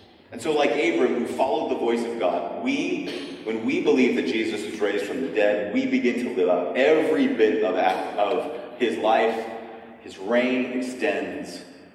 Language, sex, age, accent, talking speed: English, male, 30-49, American, 180 wpm